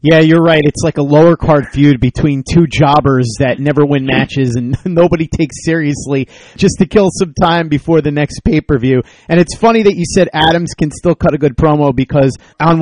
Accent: American